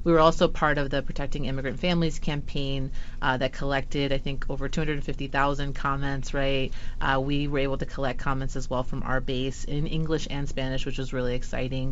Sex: female